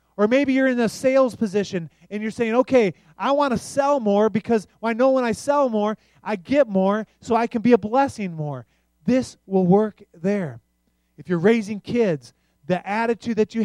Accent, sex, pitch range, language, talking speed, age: American, male, 145-210 Hz, English, 200 wpm, 30-49